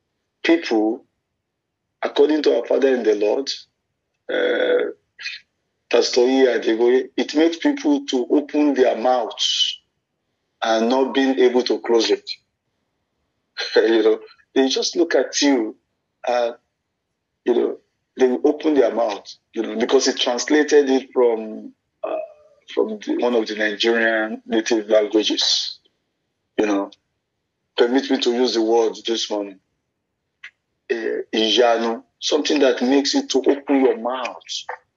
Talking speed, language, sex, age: 120 wpm, English, male, 50-69